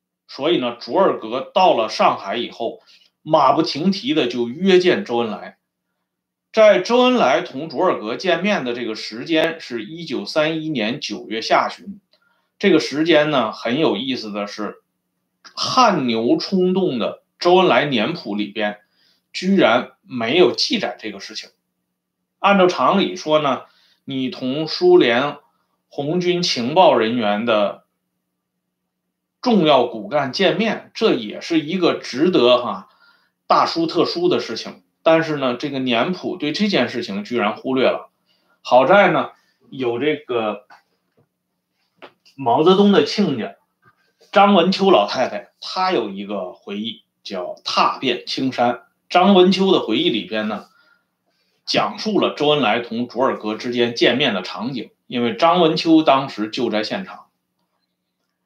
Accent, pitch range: Chinese, 115-190 Hz